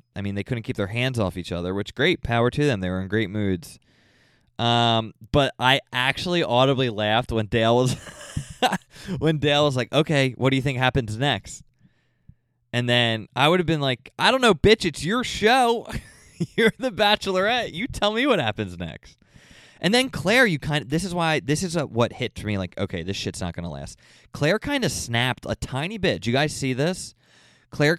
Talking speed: 210 wpm